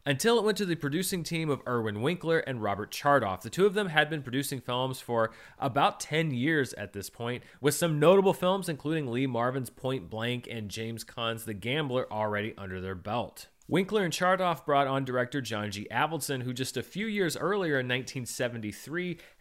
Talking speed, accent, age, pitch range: 195 wpm, American, 30-49, 115-165 Hz